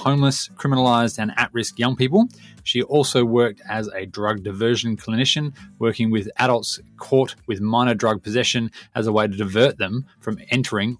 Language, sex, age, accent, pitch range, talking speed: English, male, 20-39, Australian, 110-140 Hz, 165 wpm